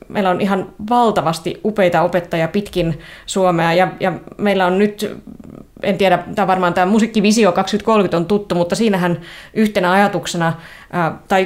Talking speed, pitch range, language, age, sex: 145 wpm, 175-205 Hz, Finnish, 20-39, female